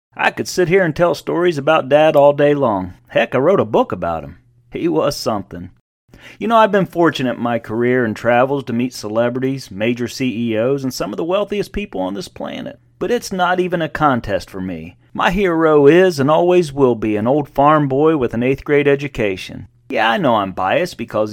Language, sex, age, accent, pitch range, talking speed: English, male, 40-59, American, 120-180 Hz, 215 wpm